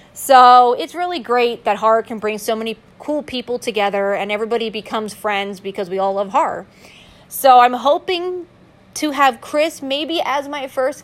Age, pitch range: 30-49, 205-255 Hz